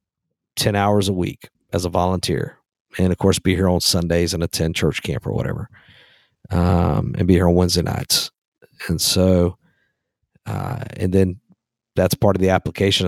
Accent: American